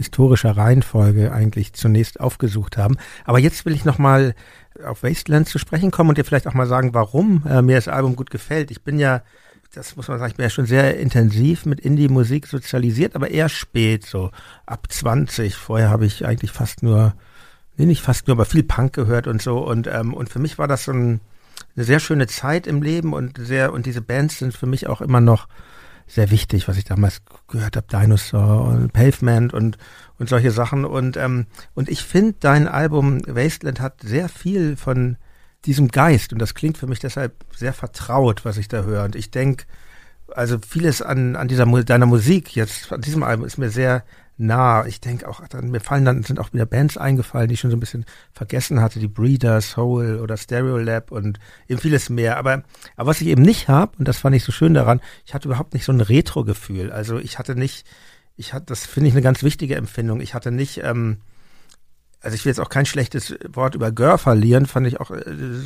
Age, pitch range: 60-79, 115-140 Hz